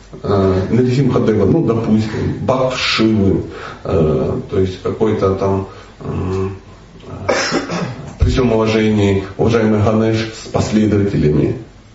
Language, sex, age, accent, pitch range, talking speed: Russian, male, 40-59, native, 100-170 Hz, 90 wpm